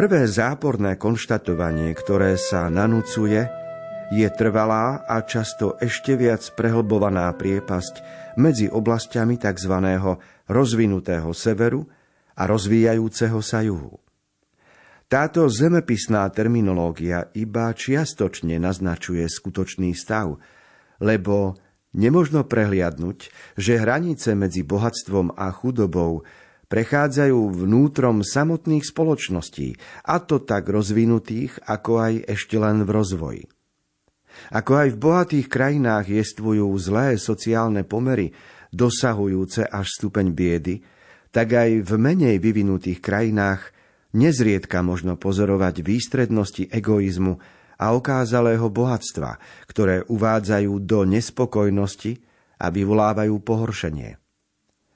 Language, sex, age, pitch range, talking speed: Slovak, male, 40-59, 95-120 Hz, 95 wpm